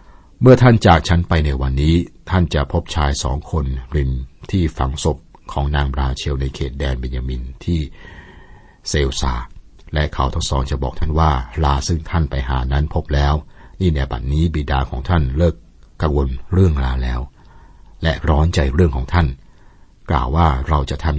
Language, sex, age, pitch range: Thai, male, 60-79, 70-85 Hz